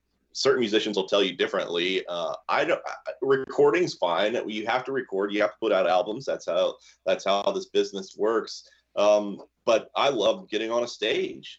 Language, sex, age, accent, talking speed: English, male, 30-49, American, 185 wpm